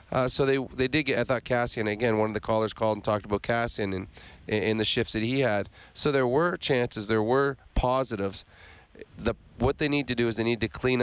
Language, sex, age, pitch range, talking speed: English, male, 30-49, 110-130 Hz, 240 wpm